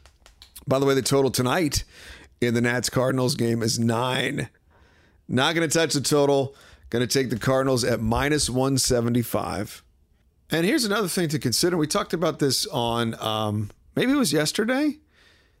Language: English